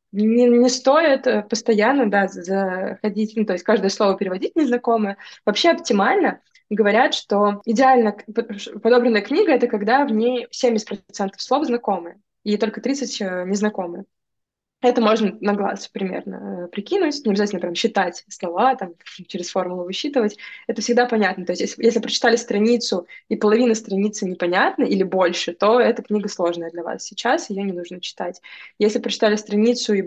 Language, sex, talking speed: Russian, female, 155 wpm